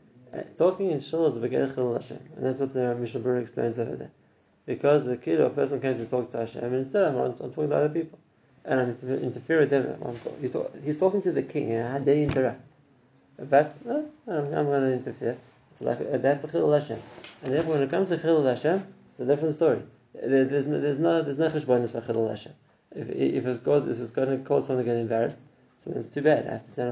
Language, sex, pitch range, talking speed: English, male, 120-145 Hz, 230 wpm